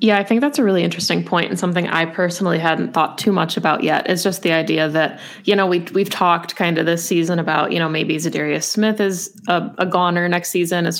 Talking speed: 245 wpm